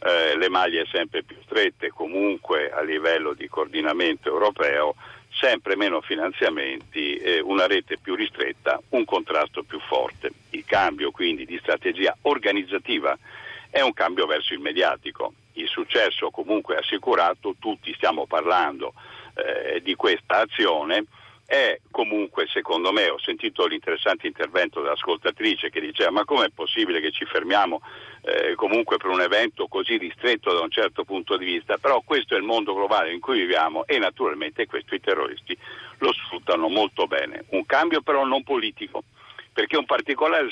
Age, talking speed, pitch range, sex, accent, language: 50-69, 150 wpm, 340-440 Hz, male, native, Italian